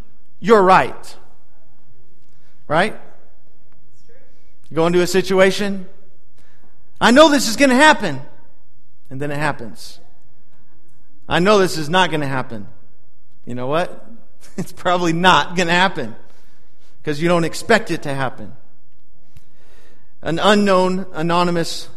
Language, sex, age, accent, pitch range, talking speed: English, male, 40-59, American, 135-190 Hz, 125 wpm